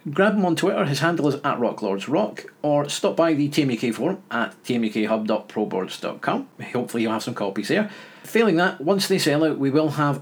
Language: English